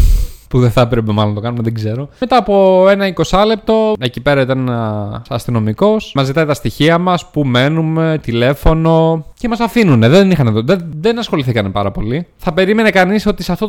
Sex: male